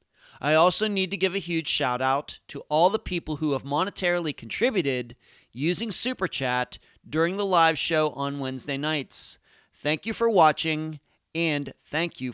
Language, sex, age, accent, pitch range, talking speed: English, male, 40-59, American, 135-180 Hz, 165 wpm